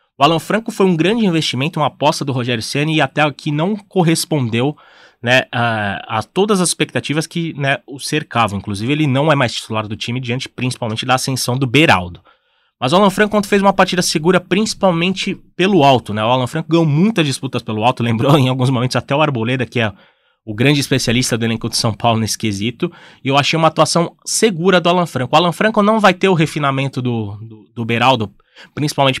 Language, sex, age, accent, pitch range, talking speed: Portuguese, male, 20-39, Brazilian, 125-170 Hz, 210 wpm